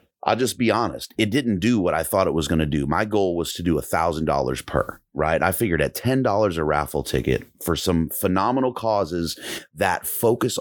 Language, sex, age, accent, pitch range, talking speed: English, male, 30-49, American, 80-100 Hz, 205 wpm